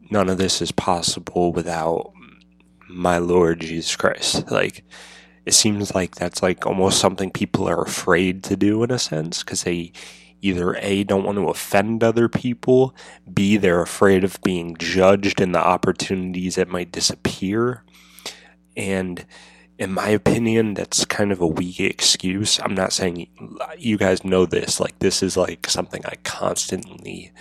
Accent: American